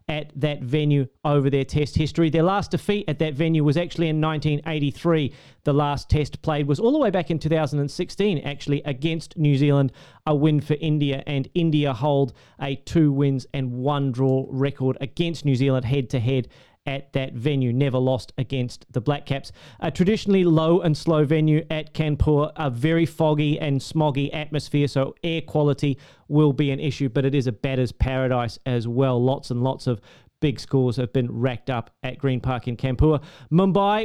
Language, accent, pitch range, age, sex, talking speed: English, Australian, 135-155 Hz, 30-49, male, 185 wpm